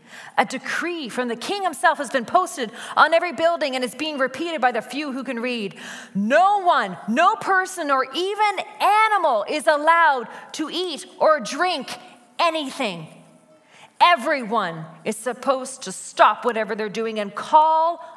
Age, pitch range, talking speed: 30-49, 215-315 Hz, 150 wpm